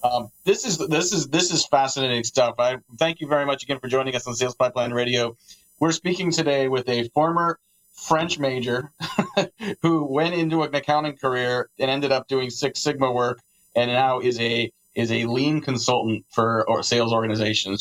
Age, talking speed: 30-49, 180 wpm